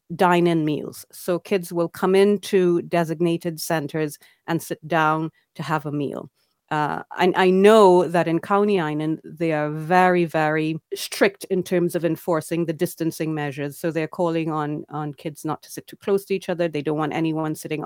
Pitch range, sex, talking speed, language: 155-185 Hz, female, 180 wpm, Finnish